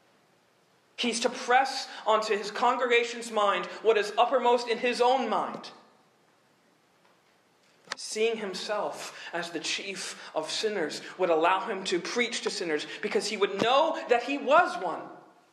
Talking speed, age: 140 wpm, 40-59